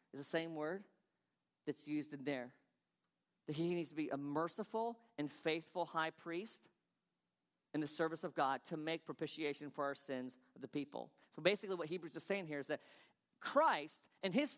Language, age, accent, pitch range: English, 40-59, American, 170-250 Hz